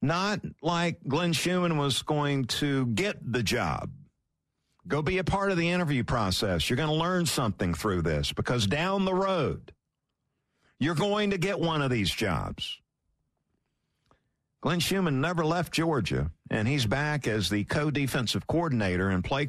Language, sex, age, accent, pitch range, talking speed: English, male, 50-69, American, 110-175 Hz, 155 wpm